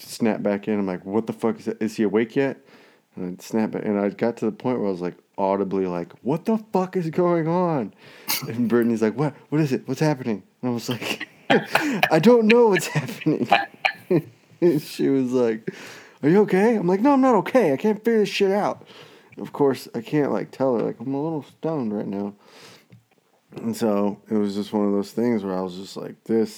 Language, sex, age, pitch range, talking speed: English, male, 20-39, 95-130 Hz, 235 wpm